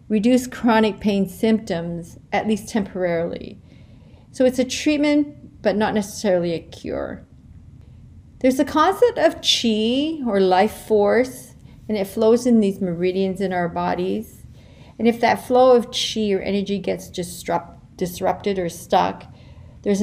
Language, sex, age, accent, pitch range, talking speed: English, female, 40-59, American, 180-230 Hz, 140 wpm